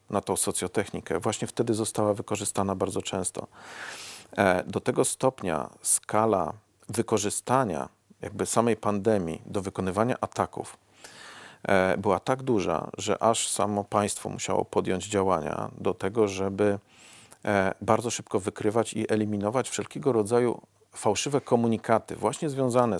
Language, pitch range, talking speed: Polish, 100-115 Hz, 115 wpm